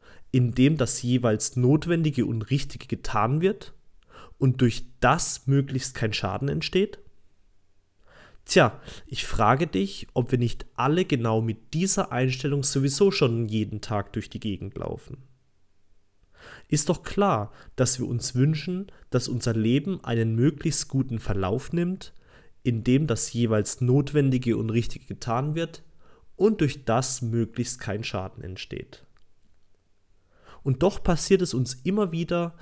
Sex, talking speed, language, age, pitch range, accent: male, 135 wpm, German, 30-49, 105-145 Hz, German